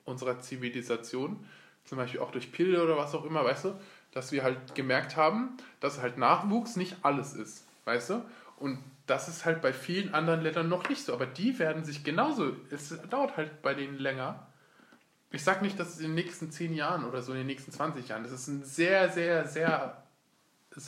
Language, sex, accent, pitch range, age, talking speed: German, male, German, 135-170 Hz, 20-39, 205 wpm